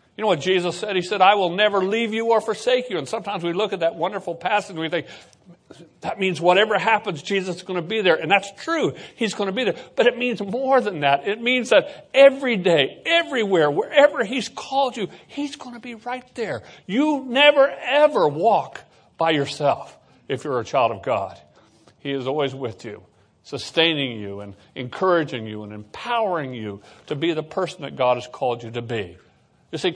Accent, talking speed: American, 210 wpm